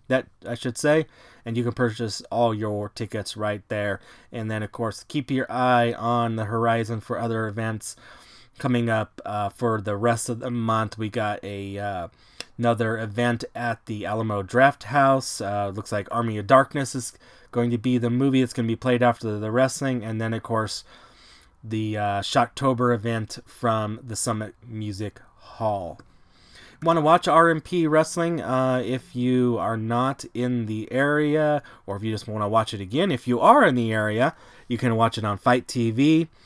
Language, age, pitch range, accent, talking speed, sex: English, 20-39, 110-130 Hz, American, 190 wpm, male